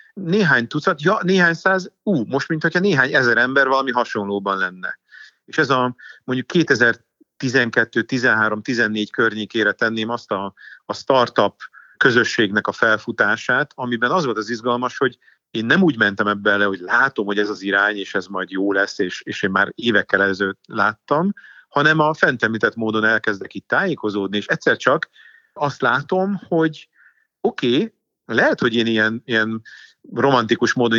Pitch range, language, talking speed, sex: 110-155 Hz, Hungarian, 155 wpm, male